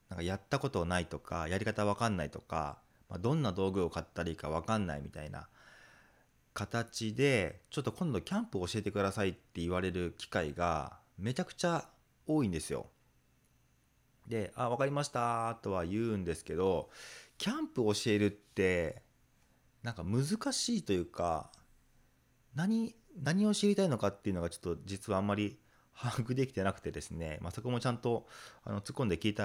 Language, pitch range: Japanese, 90-125 Hz